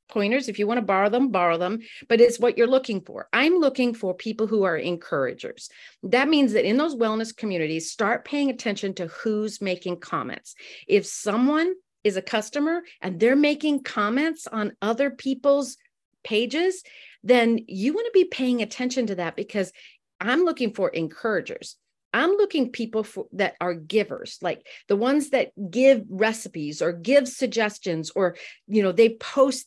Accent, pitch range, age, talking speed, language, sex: American, 195-270 Hz, 40-59, 170 wpm, English, female